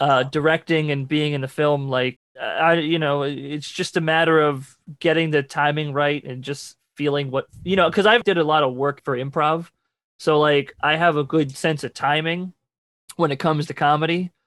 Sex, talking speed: male, 205 wpm